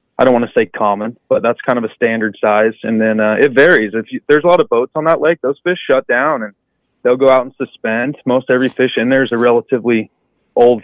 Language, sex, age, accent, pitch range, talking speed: English, male, 20-39, American, 110-130 Hz, 260 wpm